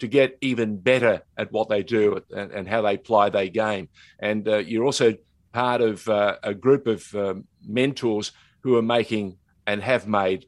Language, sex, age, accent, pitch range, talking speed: English, male, 50-69, Australian, 105-140 Hz, 190 wpm